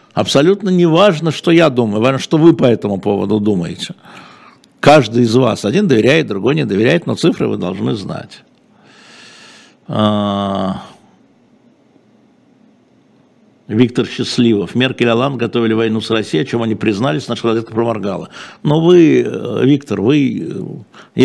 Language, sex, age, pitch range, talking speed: Russian, male, 60-79, 110-140 Hz, 125 wpm